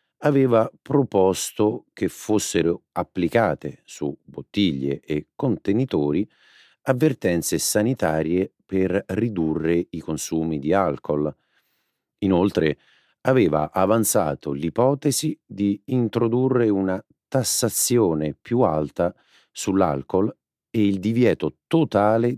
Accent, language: native, Italian